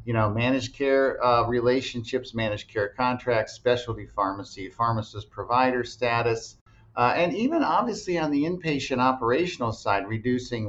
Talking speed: 135 wpm